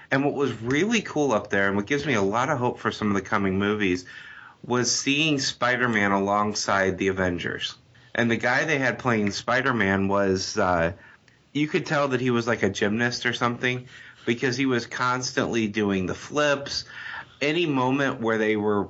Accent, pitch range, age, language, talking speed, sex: American, 105-125 Hz, 30-49, English, 185 wpm, male